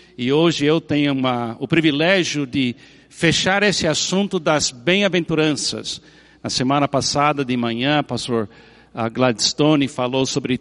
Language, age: Portuguese, 60-79